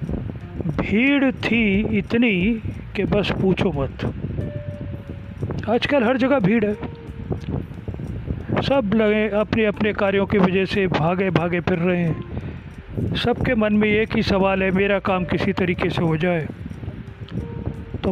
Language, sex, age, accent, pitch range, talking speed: Hindi, male, 40-59, native, 155-220 Hz, 135 wpm